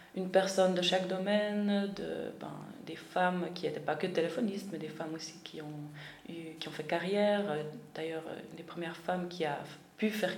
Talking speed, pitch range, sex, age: 195 wpm, 160-195 Hz, female, 20-39